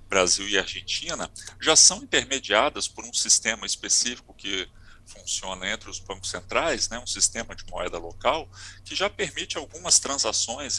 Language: Portuguese